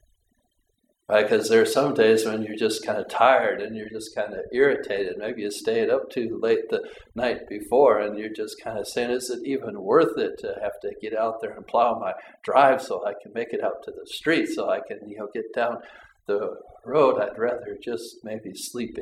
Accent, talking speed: American, 225 wpm